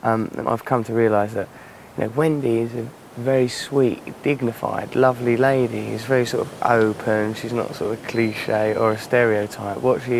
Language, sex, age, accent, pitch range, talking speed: English, male, 20-39, British, 110-125 Hz, 190 wpm